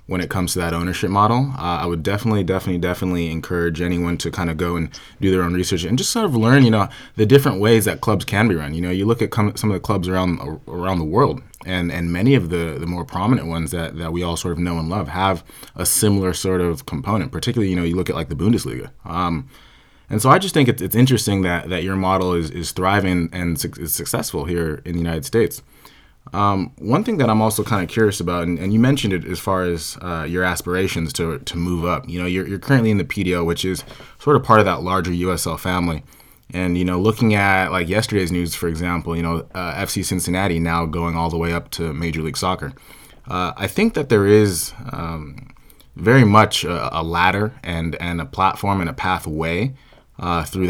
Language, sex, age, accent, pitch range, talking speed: English, male, 20-39, American, 85-105 Hz, 235 wpm